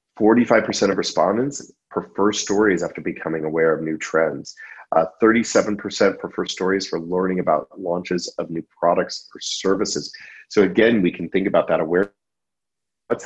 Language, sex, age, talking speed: English, male, 30-49, 145 wpm